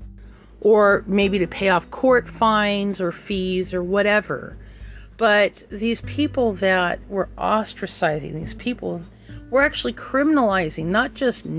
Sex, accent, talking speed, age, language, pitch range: female, American, 125 wpm, 40-59, English, 170-230 Hz